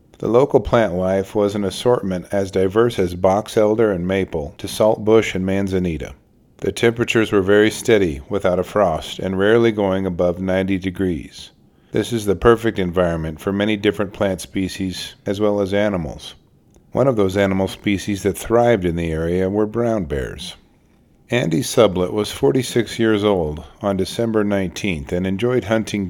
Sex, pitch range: male, 95-110 Hz